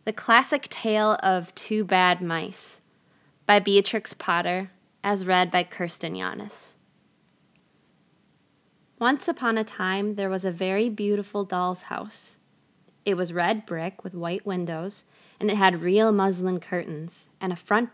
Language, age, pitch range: English, 20-39, 180-210 Hz